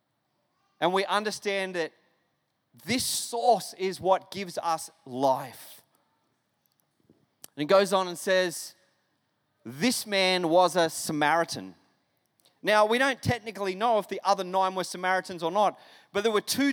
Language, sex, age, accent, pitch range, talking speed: English, male, 30-49, Australian, 180-240 Hz, 140 wpm